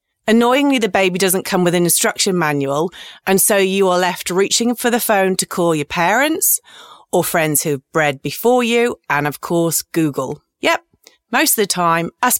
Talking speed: 185 wpm